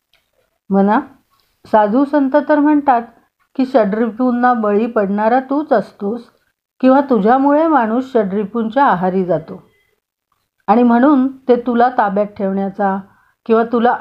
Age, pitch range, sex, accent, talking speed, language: 40-59, 215-275 Hz, female, native, 105 wpm, Marathi